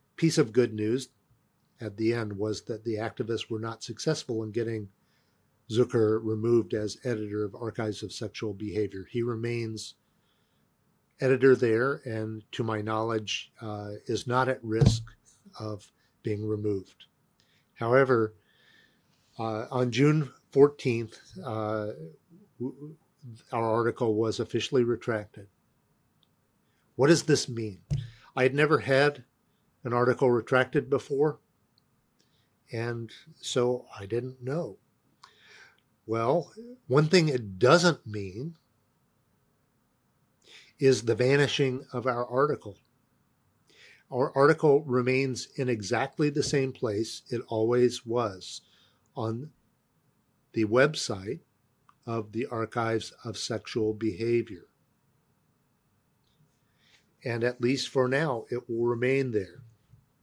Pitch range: 110-130 Hz